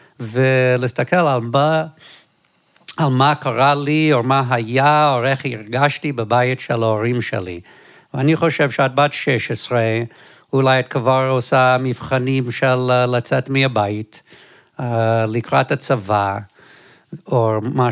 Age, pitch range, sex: 50-69, 125-165 Hz, male